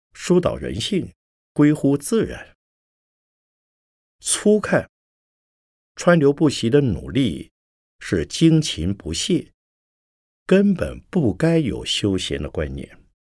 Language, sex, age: Chinese, male, 50-69